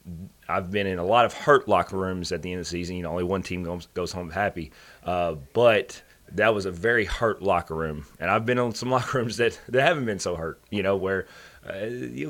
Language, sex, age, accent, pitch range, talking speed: English, male, 30-49, American, 85-105 Hz, 245 wpm